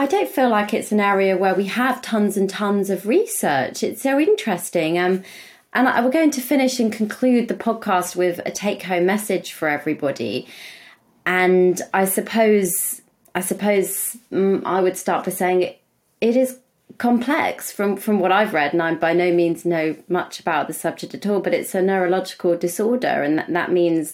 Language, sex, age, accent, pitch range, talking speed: English, female, 30-49, British, 175-205 Hz, 190 wpm